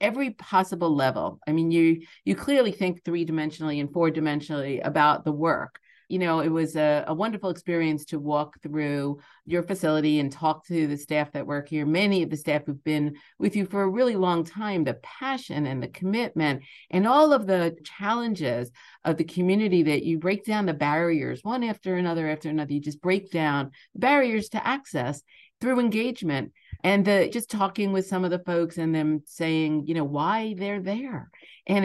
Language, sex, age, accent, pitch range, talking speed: English, female, 50-69, American, 155-200 Hz, 190 wpm